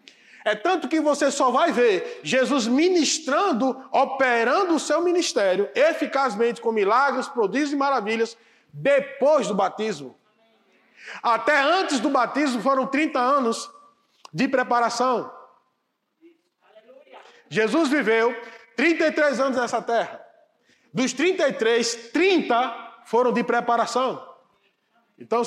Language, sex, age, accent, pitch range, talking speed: Portuguese, male, 20-39, Brazilian, 215-290 Hz, 105 wpm